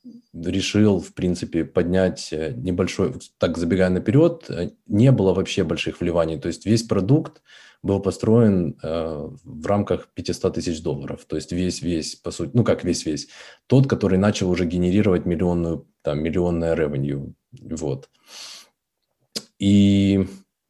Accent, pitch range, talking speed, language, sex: native, 90-105 Hz, 130 wpm, Russian, male